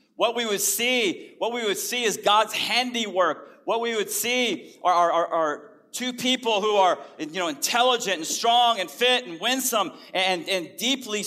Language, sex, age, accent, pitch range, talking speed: English, male, 40-59, American, 185-245 Hz, 185 wpm